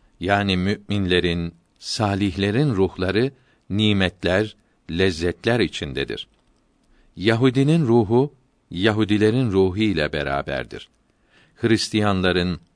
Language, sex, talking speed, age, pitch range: Turkish, male, 65 wpm, 50-69, 90-110 Hz